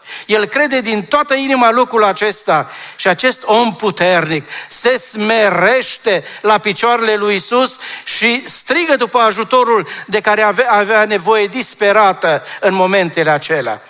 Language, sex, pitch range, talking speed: Romanian, male, 175-230 Hz, 125 wpm